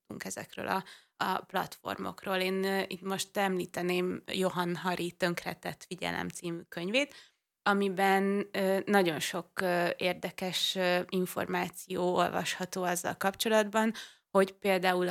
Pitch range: 175-190 Hz